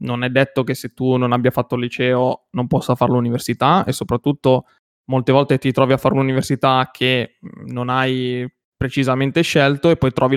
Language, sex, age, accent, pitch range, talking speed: Italian, male, 20-39, native, 125-150 Hz, 185 wpm